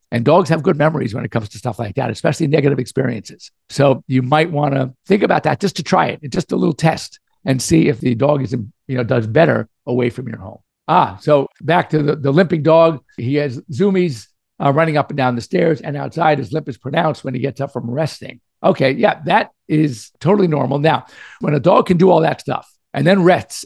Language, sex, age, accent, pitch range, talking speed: English, male, 50-69, American, 130-165 Hz, 235 wpm